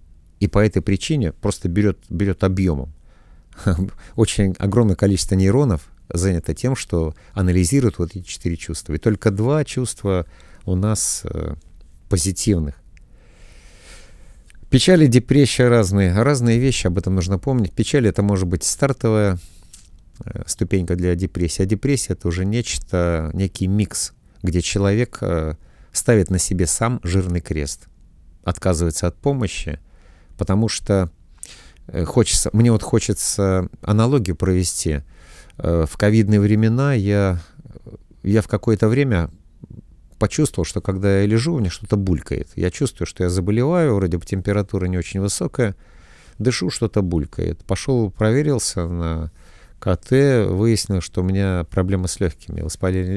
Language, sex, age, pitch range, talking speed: Russian, male, 50-69, 85-110 Hz, 125 wpm